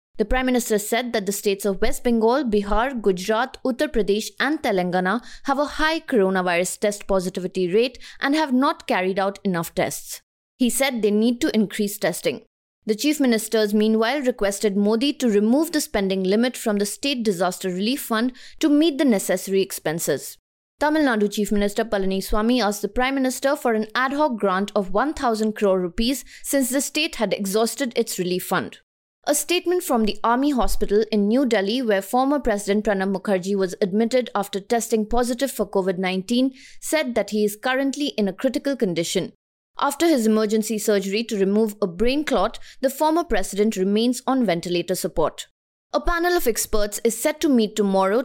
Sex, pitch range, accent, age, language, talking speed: female, 205-260 Hz, Indian, 20-39, English, 175 wpm